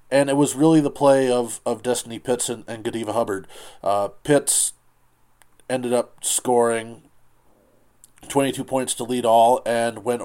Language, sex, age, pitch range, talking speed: English, male, 20-39, 105-120 Hz, 150 wpm